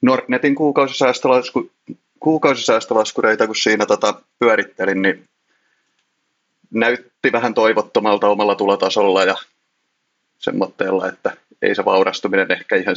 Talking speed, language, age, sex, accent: 95 wpm, Finnish, 30-49, male, native